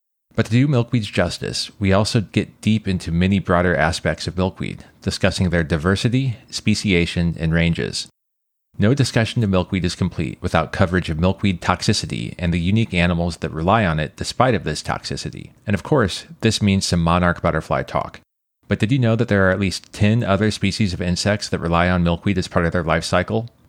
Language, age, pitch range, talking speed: English, 30-49, 85-105 Hz, 195 wpm